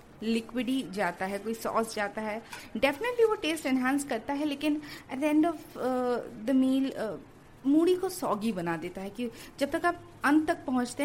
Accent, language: native, Hindi